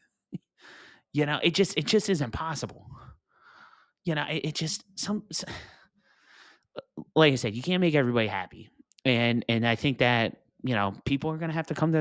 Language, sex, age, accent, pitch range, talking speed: English, male, 30-49, American, 120-155 Hz, 190 wpm